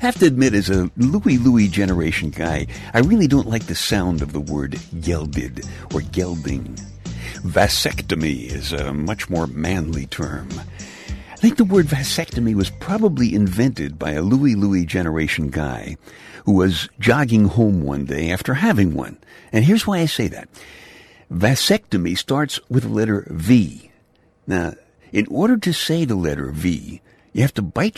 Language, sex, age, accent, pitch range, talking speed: English, male, 60-79, American, 85-130 Hz, 165 wpm